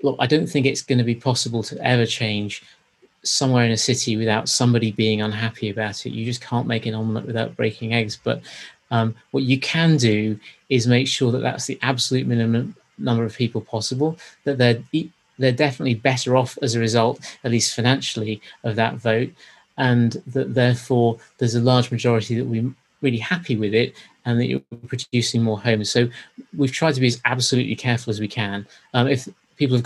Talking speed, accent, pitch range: 195 wpm, British, 115-130 Hz